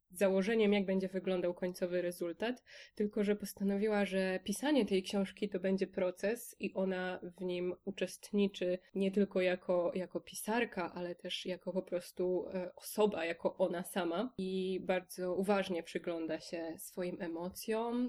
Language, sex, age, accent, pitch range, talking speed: Polish, female, 20-39, native, 180-200 Hz, 140 wpm